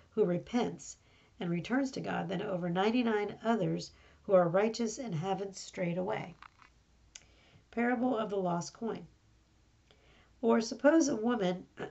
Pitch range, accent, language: 180-230 Hz, American, English